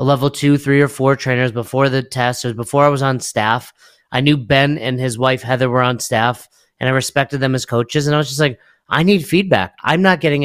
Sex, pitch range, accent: male, 125-155 Hz, American